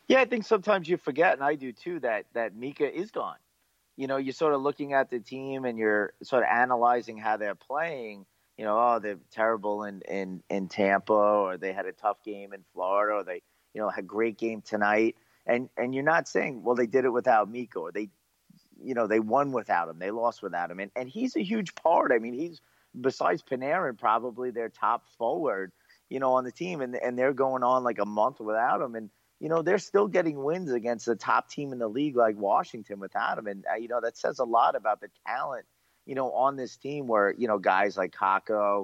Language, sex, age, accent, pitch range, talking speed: English, male, 30-49, American, 105-135 Hz, 235 wpm